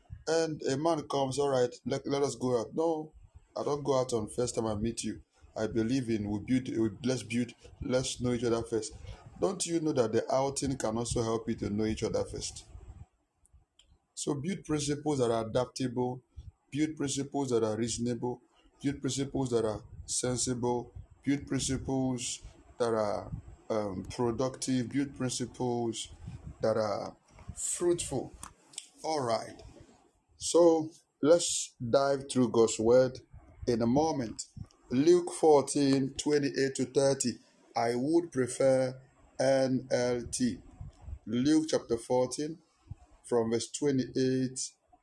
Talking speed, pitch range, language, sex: 135 wpm, 115-140 Hz, English, male